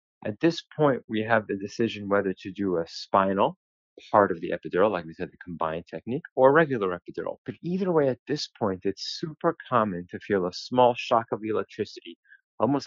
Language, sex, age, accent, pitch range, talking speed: English, male, 30-49, American, 95-135 Hz, 195 wpm